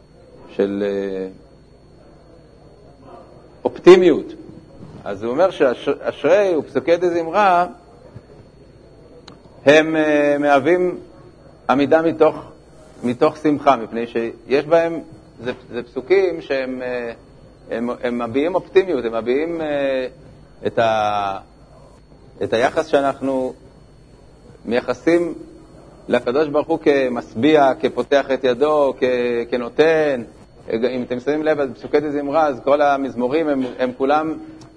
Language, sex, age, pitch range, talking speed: Hebrew, male, 40-59, 125-155 Hz, 105 wpm